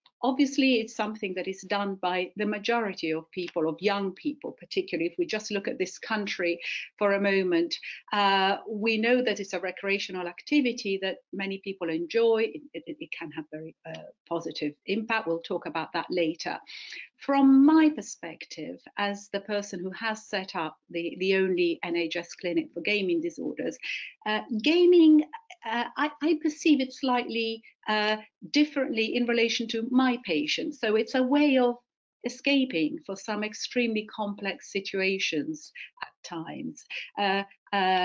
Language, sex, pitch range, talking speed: English, female, 180-245 Hz, 155 wpm